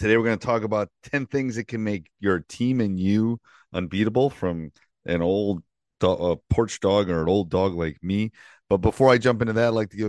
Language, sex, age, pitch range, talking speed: English, male, 30-49, 80-100 Hz, 220 wpm